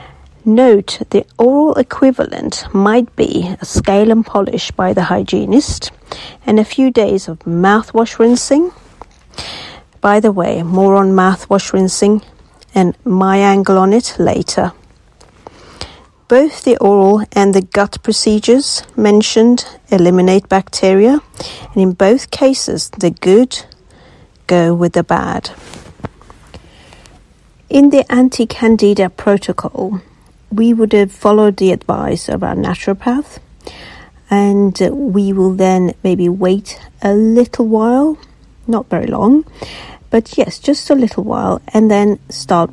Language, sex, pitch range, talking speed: English, female, 185-230 Hz, 120 wpm